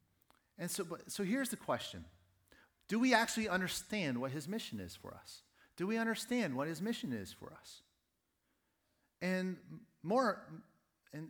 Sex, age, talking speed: male, 40-59, 150 wpm